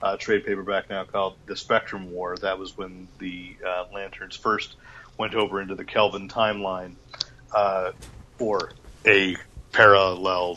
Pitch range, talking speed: 90-105 Hz, 140 wpm